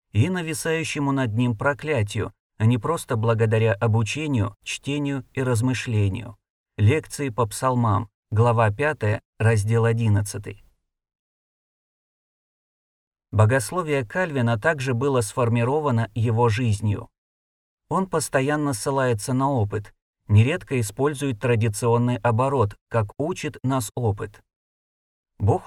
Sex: male